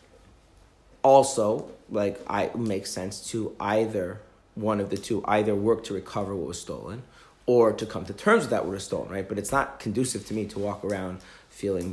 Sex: male